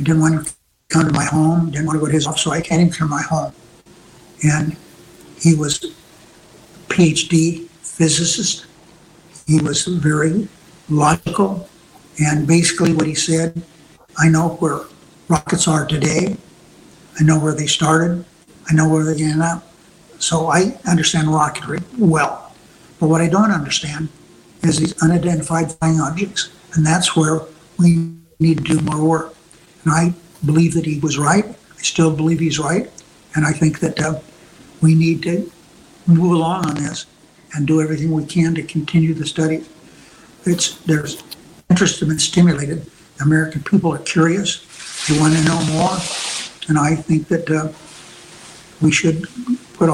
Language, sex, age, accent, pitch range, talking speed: Dutch, male, 60-79, American, 155-170 Hz, 160 wpm